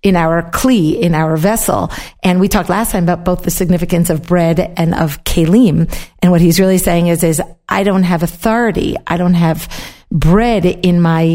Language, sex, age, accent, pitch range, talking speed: English, female, 50-69, American, 180-230 Hz, 195 wpm